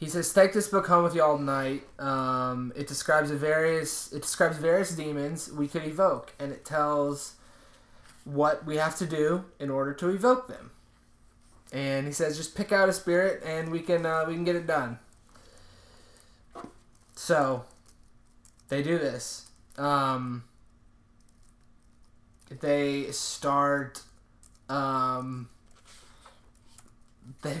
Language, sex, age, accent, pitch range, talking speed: English, male, 20-39, American, 120-150 Hz, 130 wpm